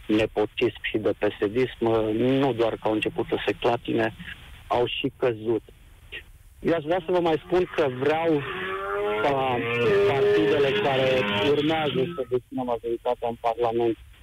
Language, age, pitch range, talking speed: Romanian, 50-69, 110-135 Hz, 140 wpm